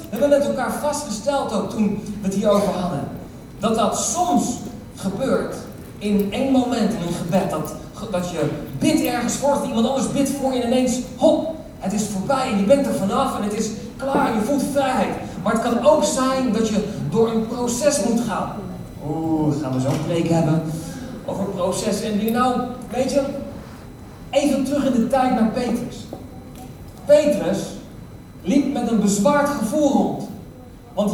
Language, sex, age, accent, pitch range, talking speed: Dutch, male, 40-59, Dutch, 190-255 Hz, 170 wpm